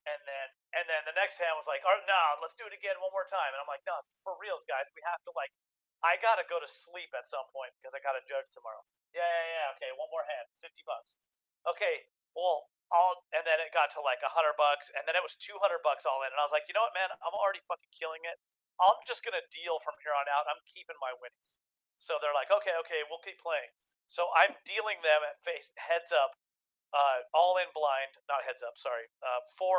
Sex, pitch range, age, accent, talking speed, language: male, 135-180 Hz, 30-49, American, 245 wpm, English